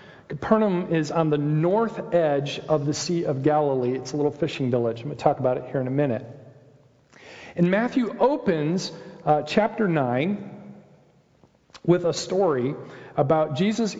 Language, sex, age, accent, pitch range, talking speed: English, male, 40-59, American, 145-200 Hz, 160 wpm